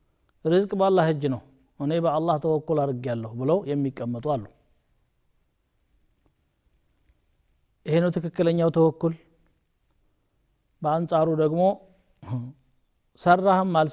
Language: Amharic